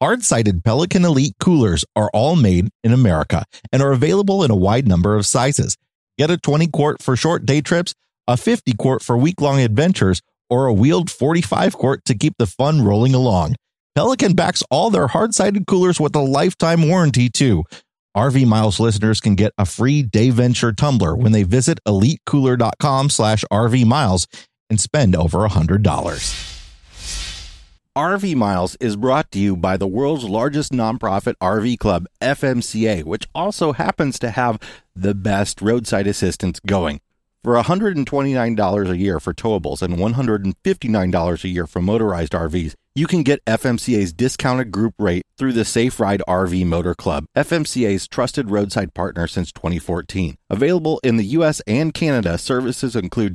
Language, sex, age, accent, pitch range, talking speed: English, male, 30-49, American, 95-145 Hz, 155 wpm